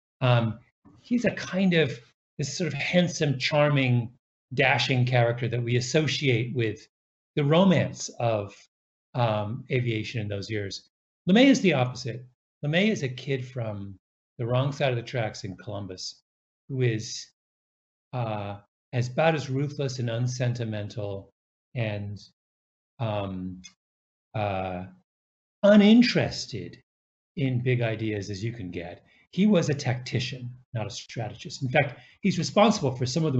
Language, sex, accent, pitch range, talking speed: English, male, American, 105-145 Hz, 135 wpm